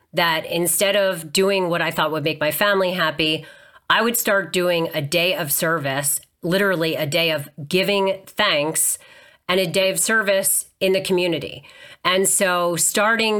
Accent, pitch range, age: American, 155-185 Hz, 30-49